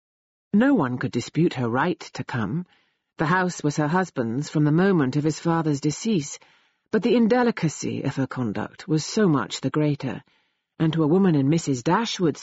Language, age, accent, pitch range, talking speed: English, 40-59, British, 140-190 Hz, 185 wpm